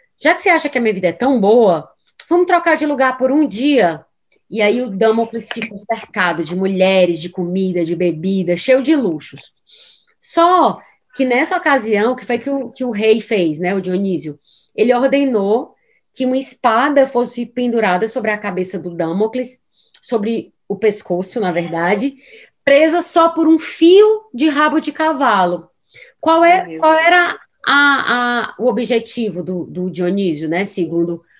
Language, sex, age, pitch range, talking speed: Portuguese, female, 20-39, 195-295 Hz, 165 wpm